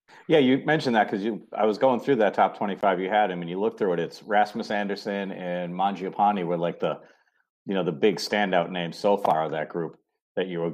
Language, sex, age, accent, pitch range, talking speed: English, male, 40-59, American, 90-110 Hz, 240 wpm